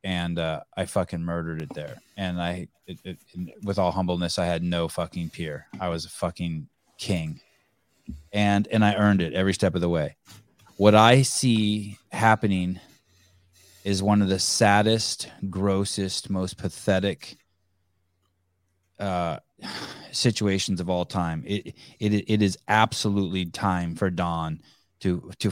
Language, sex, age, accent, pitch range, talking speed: English, male, 30-49, American, 90-110 Hz, 145 wpm